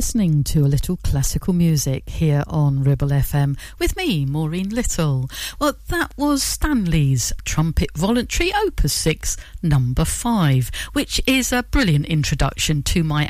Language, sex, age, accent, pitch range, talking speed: English, female, 50-69, British, 140-190 Hz, 140 wpm